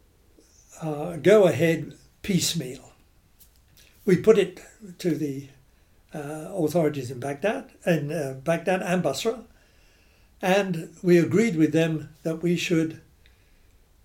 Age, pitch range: 60-79, 130-180 Hz